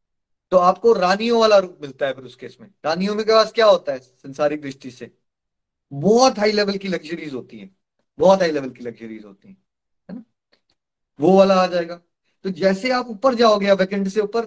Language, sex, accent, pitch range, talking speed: Hindi, male, native, 165-215 Hz, 190 wpm